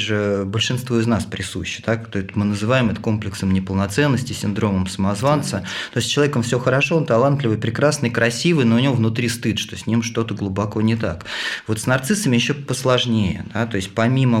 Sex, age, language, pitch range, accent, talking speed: male, 20-39, Russian, 105-125 Hz, native, 180 wpm